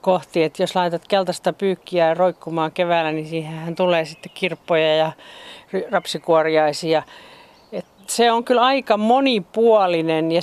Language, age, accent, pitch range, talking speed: Finnish, 40-59, native, 175-215 Hz, 125 wpm